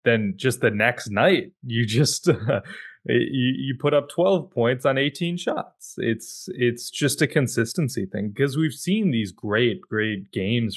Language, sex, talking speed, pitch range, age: English, male, 165 wpm, 100-140 Hz, 20-39